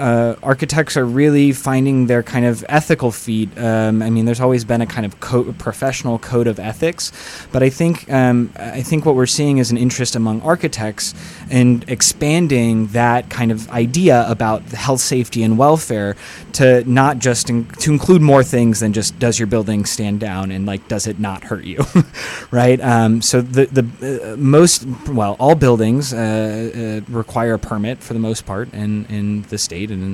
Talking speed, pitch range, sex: 190 wpm, 110-125 Hz, male